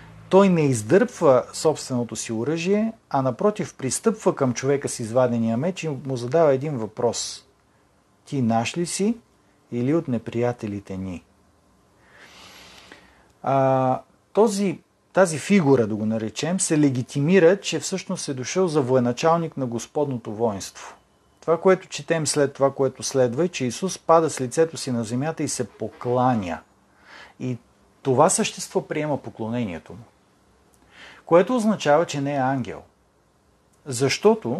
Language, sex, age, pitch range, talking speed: Bulgarian, male, 40-59, 125-170 Hz, 135 wpm